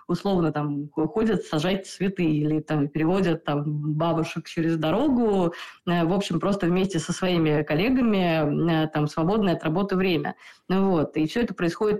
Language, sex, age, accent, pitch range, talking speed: Russian, female, 20-39, native, 165-210 Hz, 145 wpm